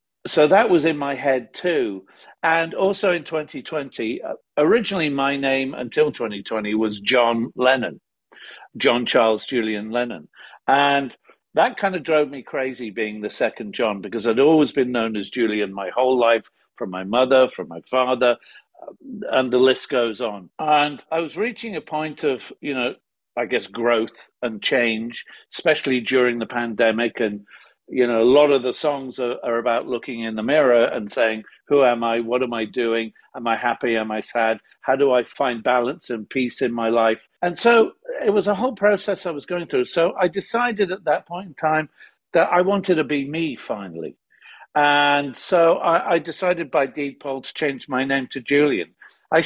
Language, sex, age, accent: English, male, 50-69, British